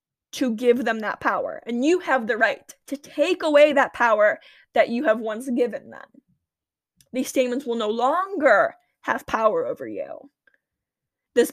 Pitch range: 245-315 Hz